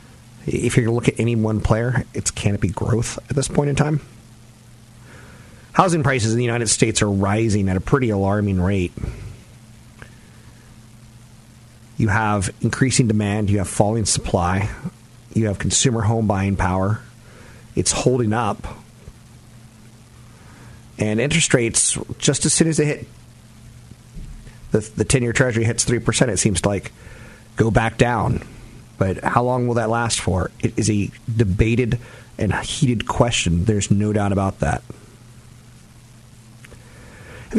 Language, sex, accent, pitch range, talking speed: English, male, American, 110-120 Hz, 140 wpm